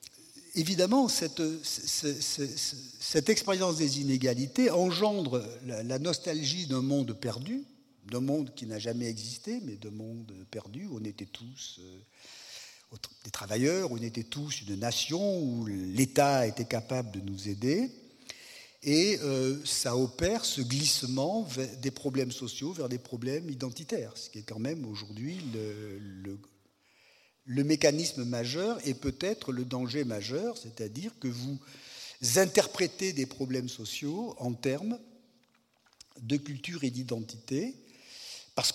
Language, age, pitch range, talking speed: French, 50-69, 120-170 Hz, 130 wpm